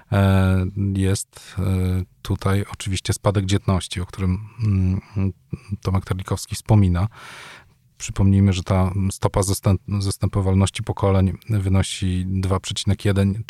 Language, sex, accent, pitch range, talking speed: Polish, male, native, 95-110 Hz, 80 wpm